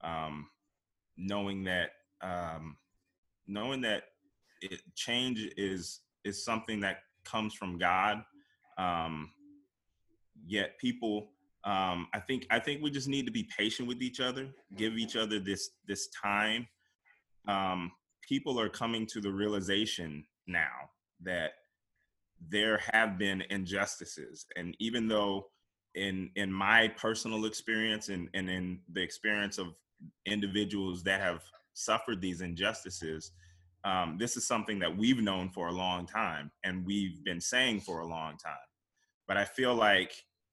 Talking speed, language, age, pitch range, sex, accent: 140 wpm, English, 20-39, 90-110 Hz, male, American